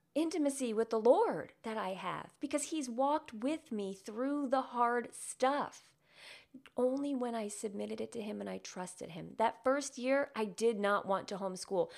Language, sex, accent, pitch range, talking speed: English, female, American, 175-230 Hz, 180 wpm